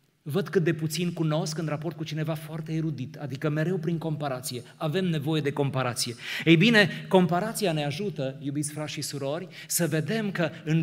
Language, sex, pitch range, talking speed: Romanian, male, 140-165 Hz, 175 wpm